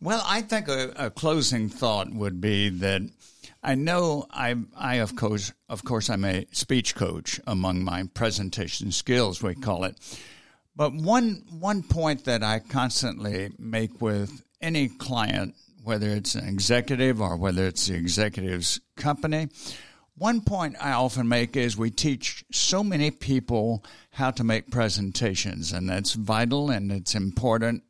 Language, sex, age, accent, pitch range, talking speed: English, male, 60-79, American, 100-135 Hz, 155 wpm